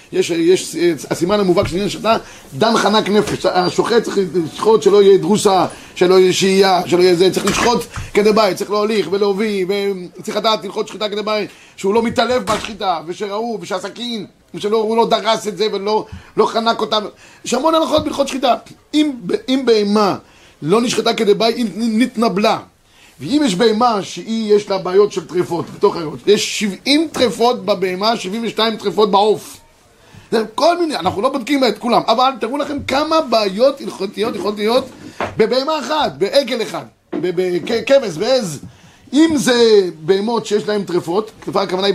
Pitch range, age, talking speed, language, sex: 195-245 Hz, 30-49, 155 wpm, Hebrew, male